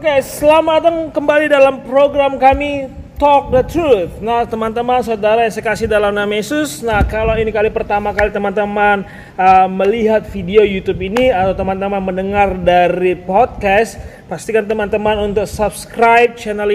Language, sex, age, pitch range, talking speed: Indonesian, male, 30-49, 185-220 Hz, 145 wpm